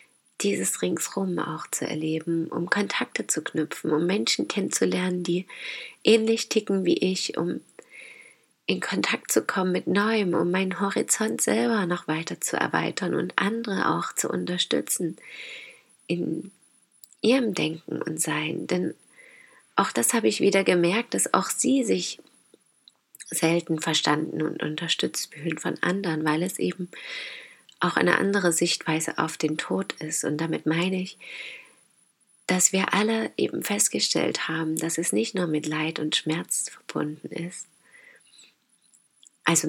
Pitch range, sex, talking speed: 160-200 Hz, female, 140 wpm